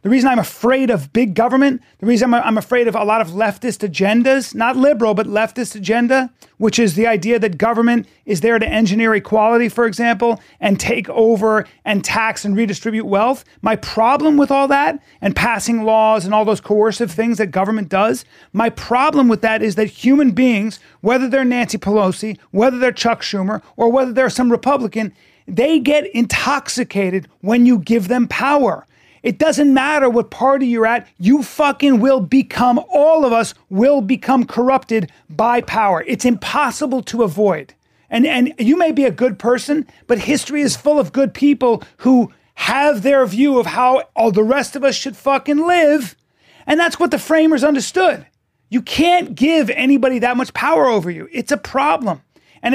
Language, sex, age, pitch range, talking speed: English, male, 30-49, 220-270 Hz, 180 wpm